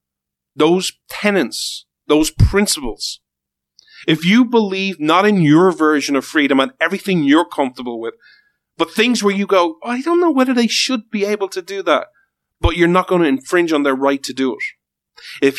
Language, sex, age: English, male, 40-59